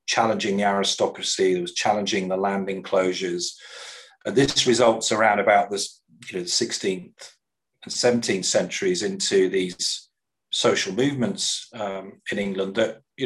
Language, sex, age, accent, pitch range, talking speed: English, male, 40-59, British, 95-130 Hz, 135 wpm